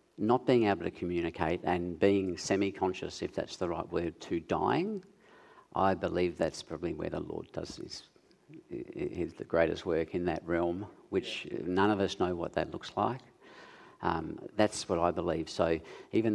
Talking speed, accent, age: 170 wpm, Australian, 50-69